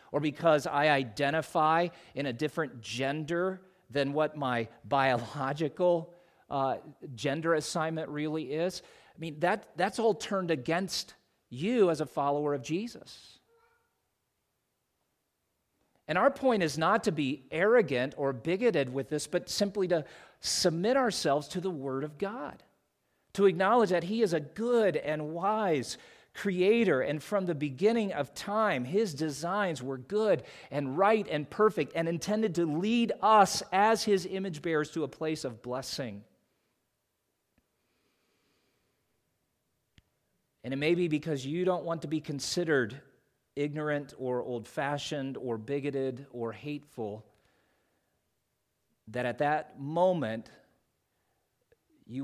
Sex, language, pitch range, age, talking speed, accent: male, English, 135-185 Hz, 40-59, 130 wpm, American